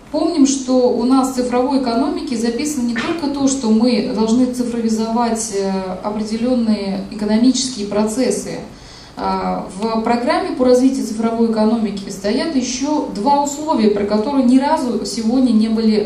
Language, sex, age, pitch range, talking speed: Russian, female, 30-49, 215-265 Hz, 130 wpm